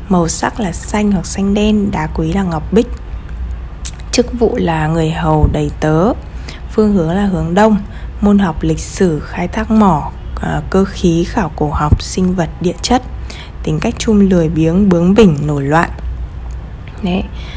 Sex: female